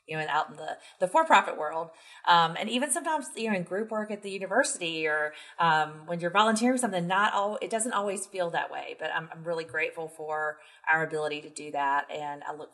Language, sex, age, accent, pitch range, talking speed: English, female, 30-49, American, 155-195 Hz, 230 wpm